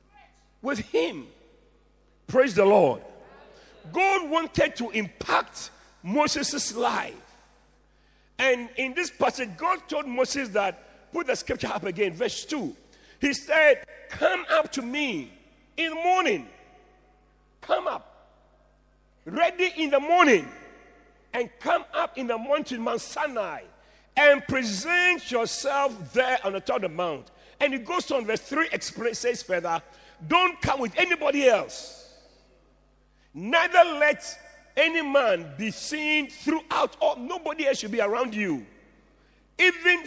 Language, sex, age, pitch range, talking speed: English, male, 50-69, 235-315 Hz, 130 wpm